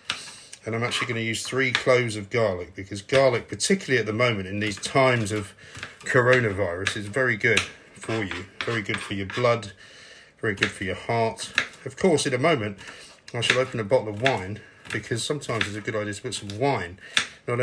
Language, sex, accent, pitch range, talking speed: English, male, British, 110-135 Hz, 200 wpm